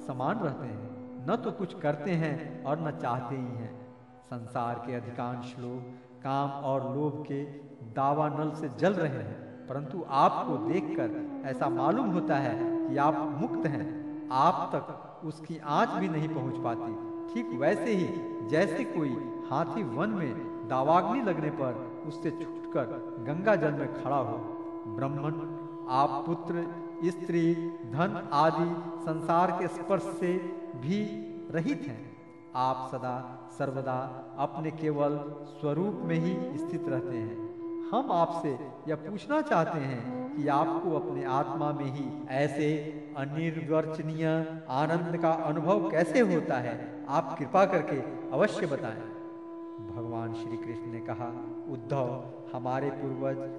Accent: native